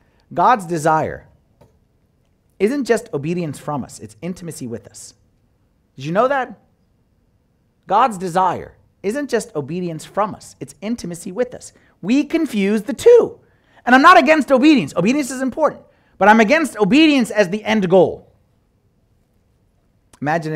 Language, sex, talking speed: English, male, 135 wpm